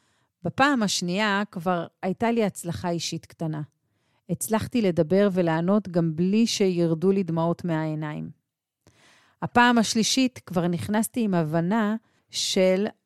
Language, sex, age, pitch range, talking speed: Hebrew, female, 40-59, 165-220 Hz, 110 wpm